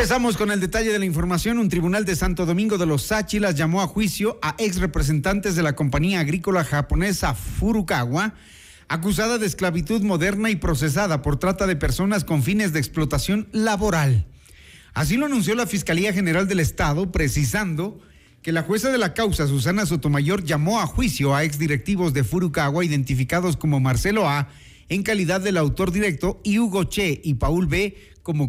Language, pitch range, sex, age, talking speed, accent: Spanish, 145-200 Hz, male, 40-59, 175 wpm, Mexican